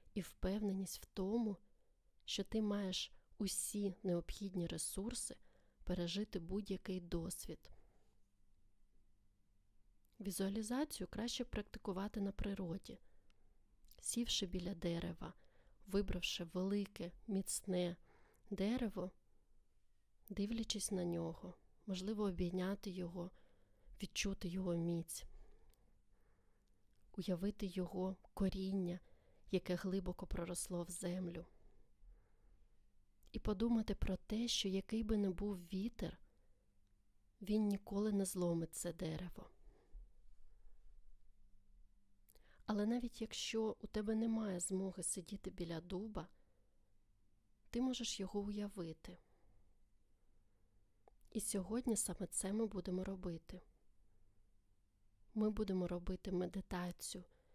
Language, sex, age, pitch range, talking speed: Ukrainian, female, 30-49, 165-205 Hz, 85 wpm